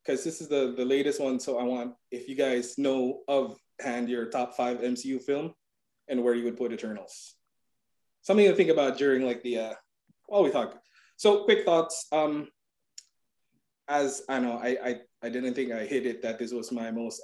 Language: English